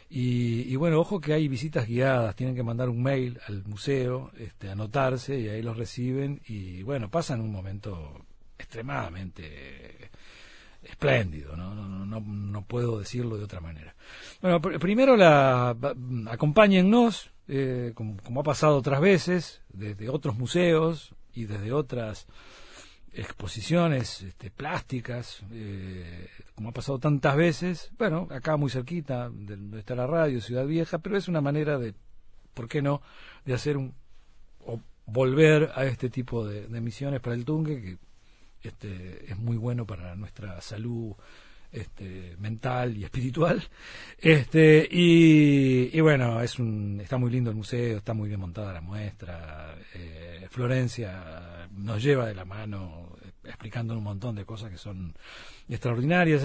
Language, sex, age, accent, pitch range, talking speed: Spanish, male, 40-59, Argentinian, 105-145 Hz, 150 wpm